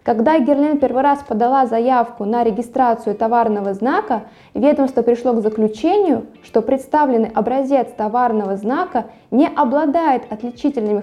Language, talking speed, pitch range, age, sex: Russian, 120 wpm, 230-300 Hz, 20-39, female